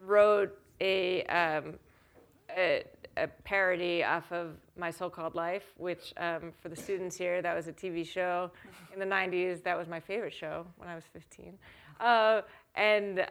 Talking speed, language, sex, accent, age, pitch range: 160 wpm, English, female, American, 30-49, 170-195 Hz